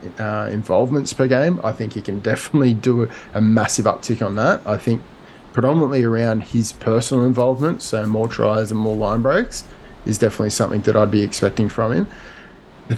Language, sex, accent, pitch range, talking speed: English, male, Australian, 110-125 Hz, 185 wpm